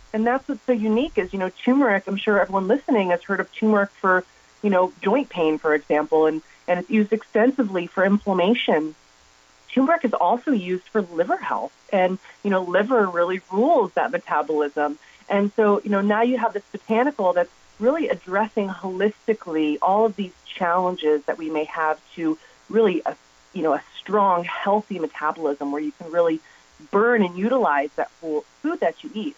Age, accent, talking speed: 30-49, American, 180 wpm